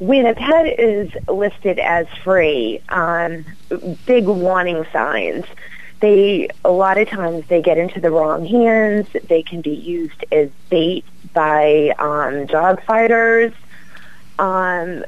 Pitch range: 170-205 Hz